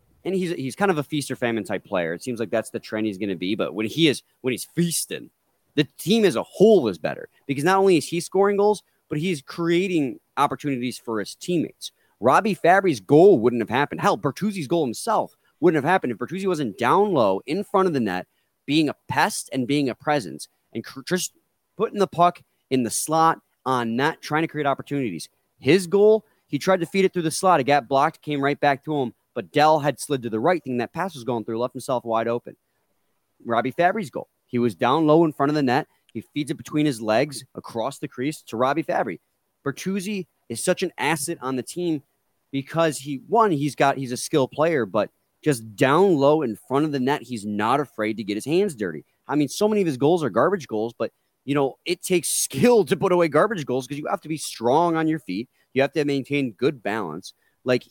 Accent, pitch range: American, 125-170 Hz